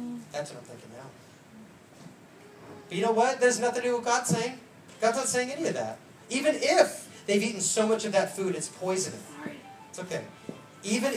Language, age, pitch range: English, 30-49, 170-220 Hz